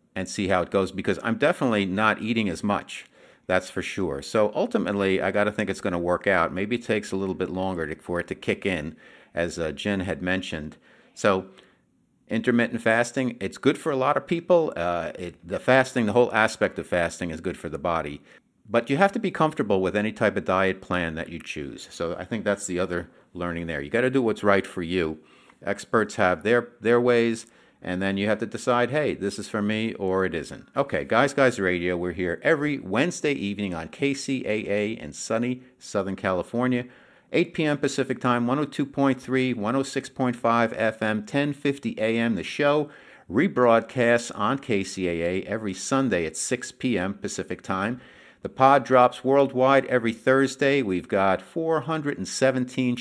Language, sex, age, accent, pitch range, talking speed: English, male, 50-69, American, 95-130 Hz, 180 wpm